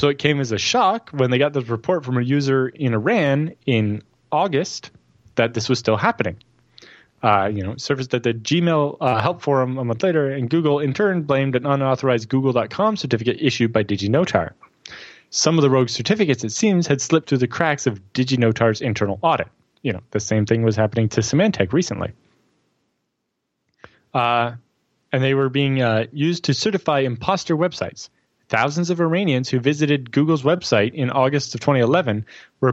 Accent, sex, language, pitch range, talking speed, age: American, male, English, 120-155 Hz, 180 wpm, 20-39